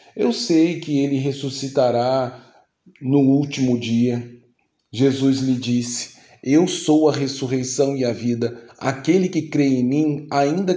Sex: male